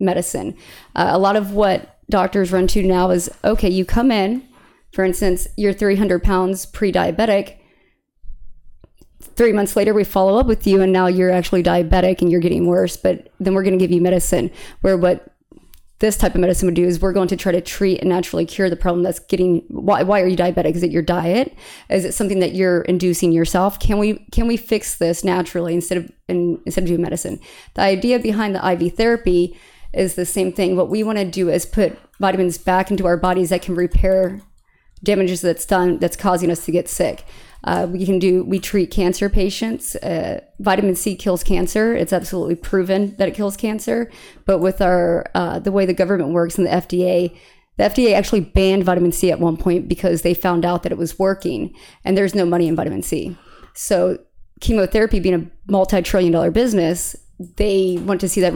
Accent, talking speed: American, 205 wpm